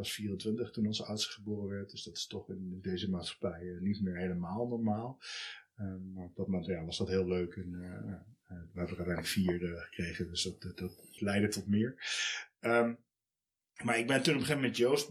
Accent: Dutch